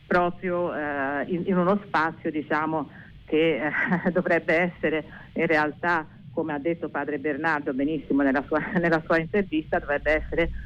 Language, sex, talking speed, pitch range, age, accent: Italian, female, 145 wpm, 150-180 Hz, 40-59, native